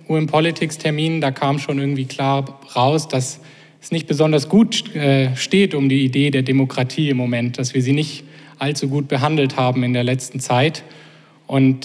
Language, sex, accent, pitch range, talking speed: German, male, German, 135-155 Hz, 175 wpm